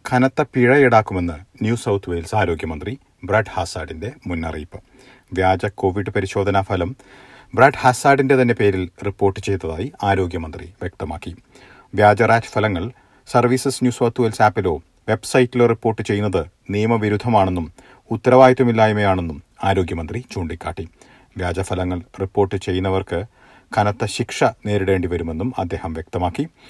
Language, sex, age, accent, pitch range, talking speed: Malayalam, male, 40-59, native, 95-125 Hz, 95 wpm